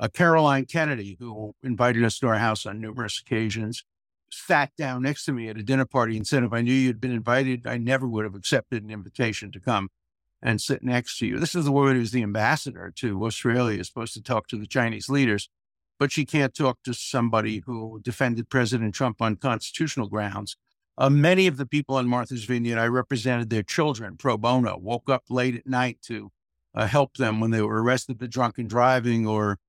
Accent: American